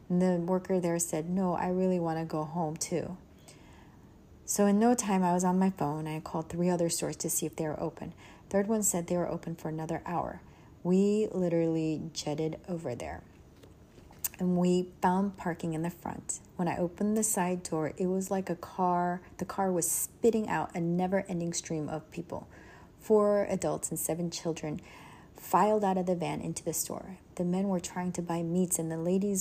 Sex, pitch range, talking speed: female, 165-190 Hz, 200 wpm